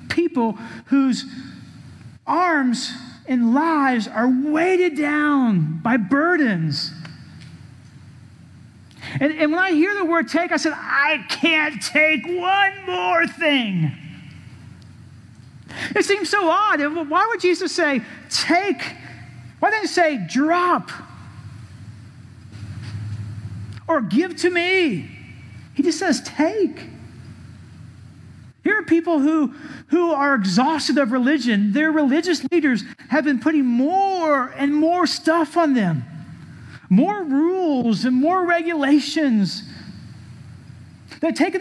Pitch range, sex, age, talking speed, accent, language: 210-335 Hz, male, 40-59, 110 wpm, American, English